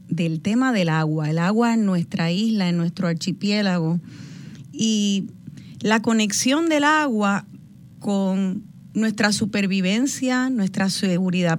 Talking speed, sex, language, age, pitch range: 115 wpm, female, Spanish, 30-49, 175-235 Hz